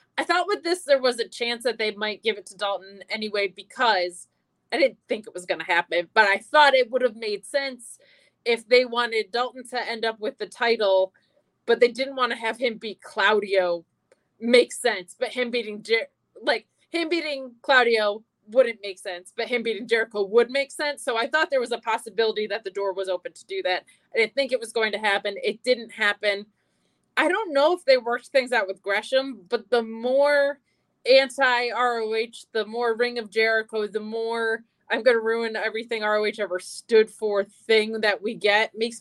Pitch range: 210-260 Hz